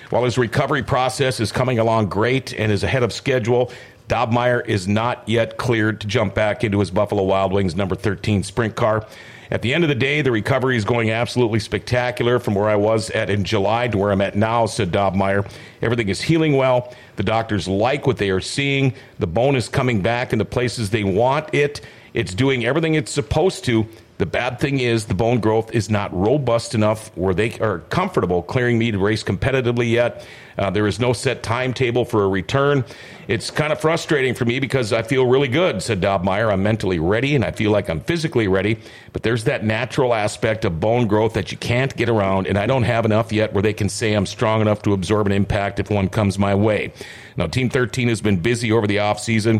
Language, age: English, 50-69